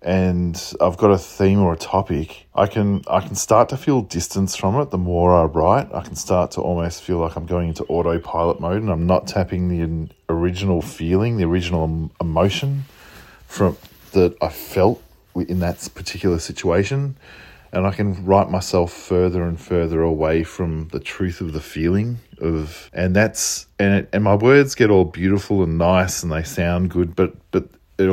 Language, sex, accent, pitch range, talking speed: English, male, Australian, 85-100 Hz, 185 wpm